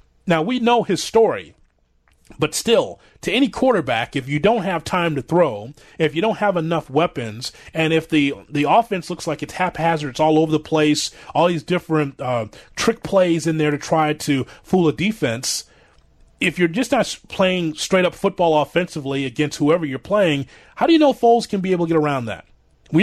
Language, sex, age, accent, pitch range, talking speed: English, male, 30-49, American, 150-200 Hz, 200 wpm